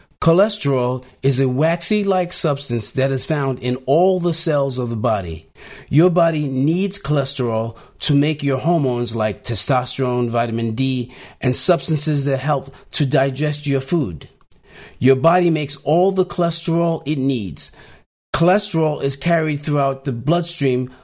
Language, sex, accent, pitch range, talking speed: English, male, American, 120-160 Hz, 140 wpm